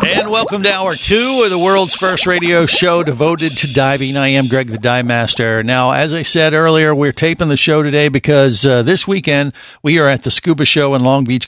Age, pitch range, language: 50-69, 120-150 Hz, English